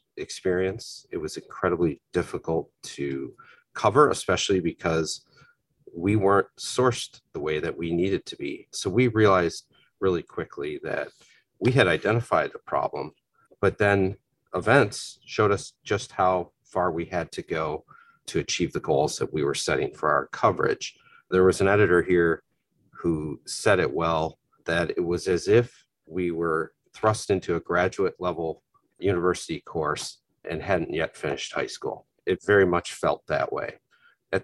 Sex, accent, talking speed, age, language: male, American, 155 wpm, 40-59, English